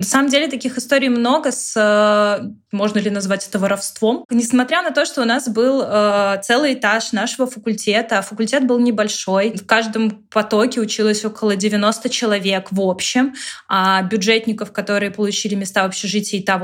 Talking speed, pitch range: 155 wpm, 210-255 Hz